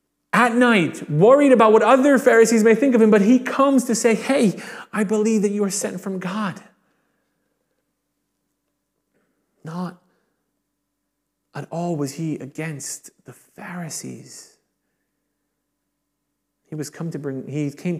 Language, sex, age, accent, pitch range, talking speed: English, male, 30-49, American, 150-185 Hz, 135 wpm